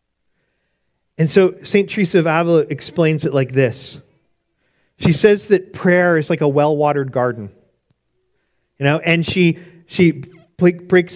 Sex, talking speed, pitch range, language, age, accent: male, 135 wpm, 150-175 Hz, English, 40-59, American